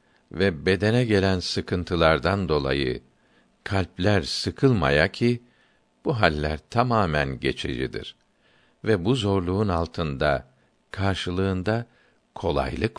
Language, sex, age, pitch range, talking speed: Turkish, male, 60-79, 80-110 Hz, 85 wpm